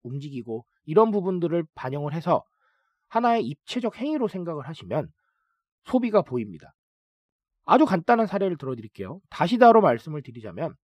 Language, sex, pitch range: Korean, male, 145-230 Hz